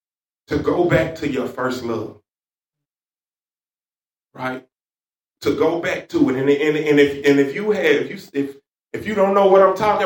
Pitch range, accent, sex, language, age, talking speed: 135-200 Hz, American, male, English, 30-49, 185 wpm